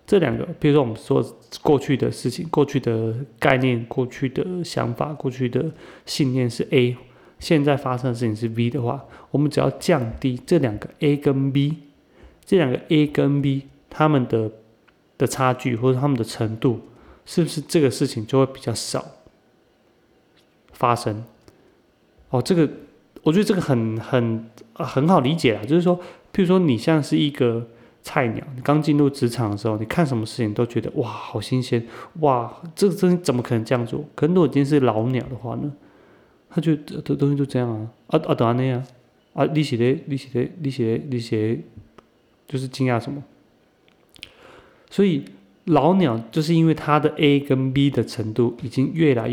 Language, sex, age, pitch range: Chinese, male, 30-49, 120-150 Hz